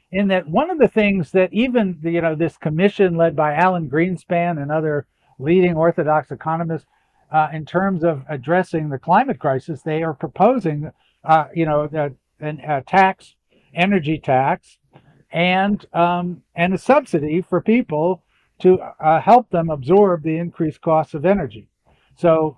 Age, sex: 60-79, male